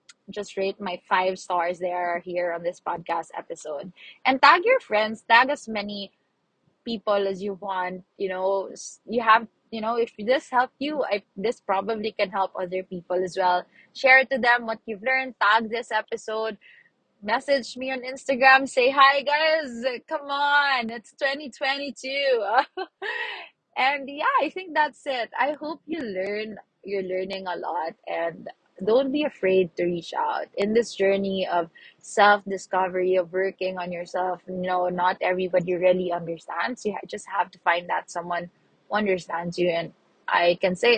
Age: 20-39